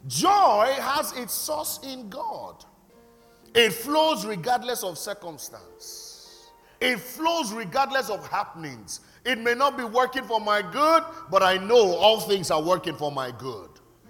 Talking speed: 145 wpm